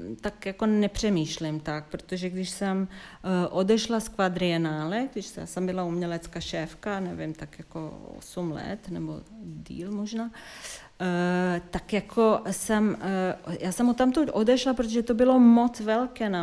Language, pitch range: Czech, 190-225 Hz